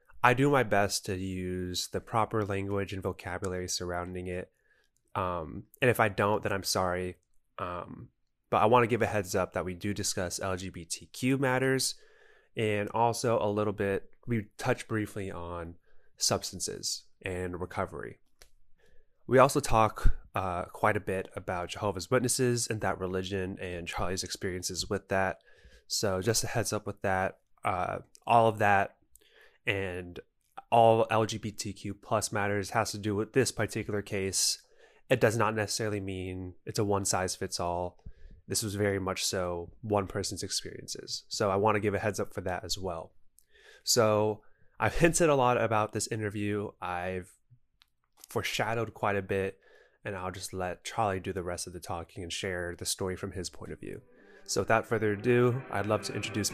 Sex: male